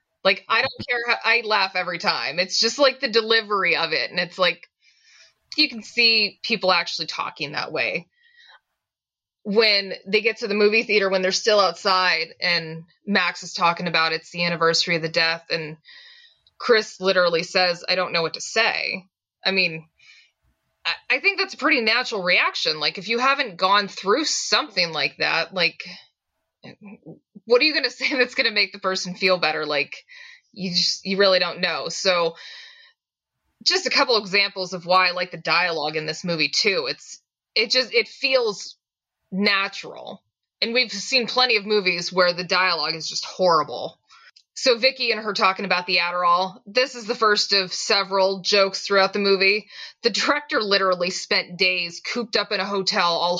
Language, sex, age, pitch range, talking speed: English, female, 20-39, 175-230 Hz, 180 wpm